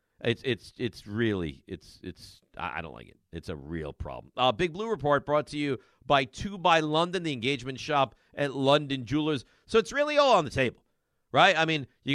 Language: English